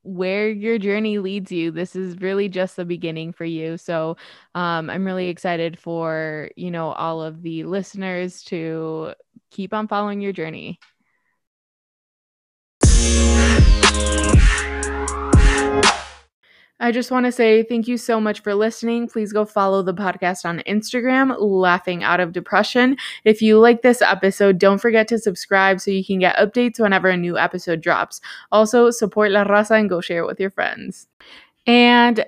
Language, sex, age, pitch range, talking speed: English, female, 20-39, 180-225 Hz, 155 wpm